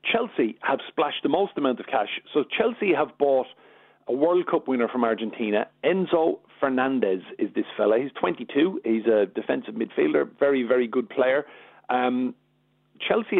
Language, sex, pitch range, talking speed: English, male, 115-165 Hz, 155 wpm